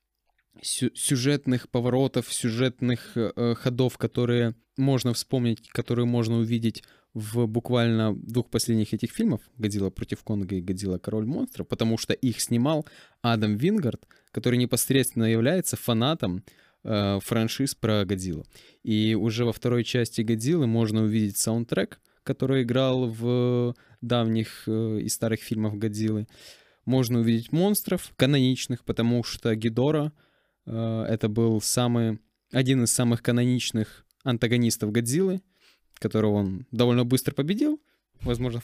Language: Ukrainian